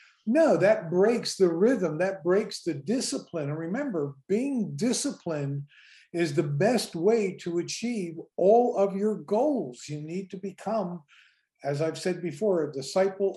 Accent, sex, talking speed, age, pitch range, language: American, male, 150 wpm, 50-69, 155-195 Hz, English